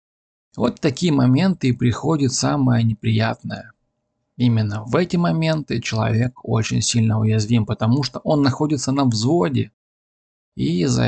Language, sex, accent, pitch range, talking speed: Russian, male, native, 110-130 Hz, 125 wpm